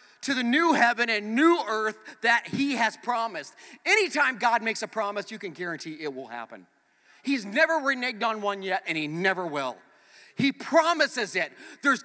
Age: 30-49